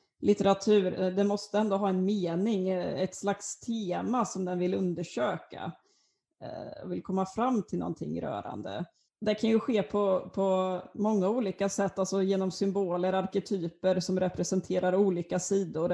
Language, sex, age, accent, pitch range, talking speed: Swedish, female, 30-49, native, 180-200 Hz, 140 wpm